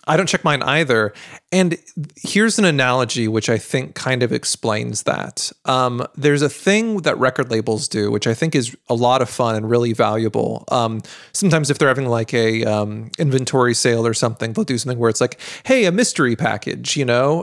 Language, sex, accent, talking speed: English, male, American, 205 wpm